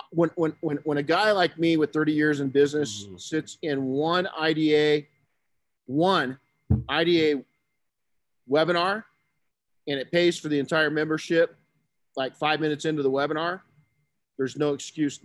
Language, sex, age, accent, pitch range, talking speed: English, male, 40-59, American, 130-155 Hz, 140 wpm